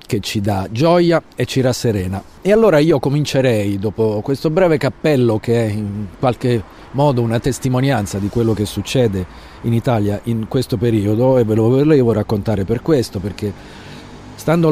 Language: Italian